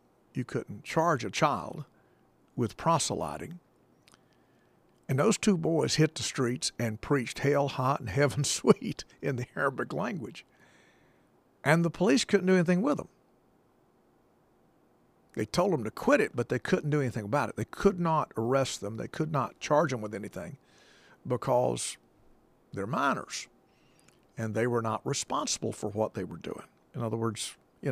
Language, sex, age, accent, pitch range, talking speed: English, male, 50-69, American, 110-155 Hz, 160 wpm